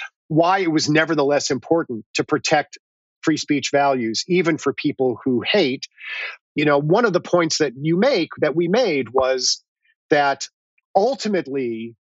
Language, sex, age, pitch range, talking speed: English, male, 40-59, 135-175 Hz, 150 wpm